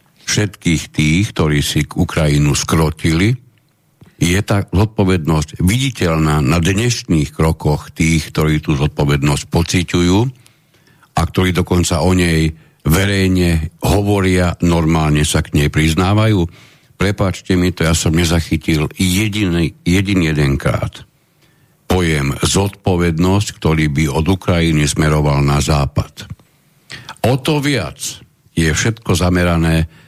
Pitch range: 80-105 Hz